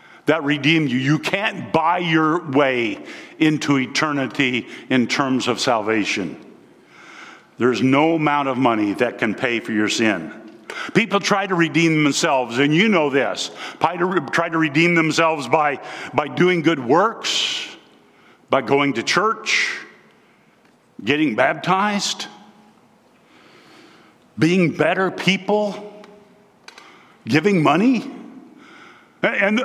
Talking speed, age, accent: 110 wpm, 50-69, American